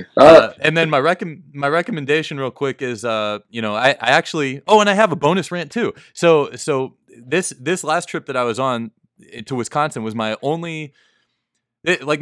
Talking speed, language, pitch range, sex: 195 wpm, English, 105-140 Hz, male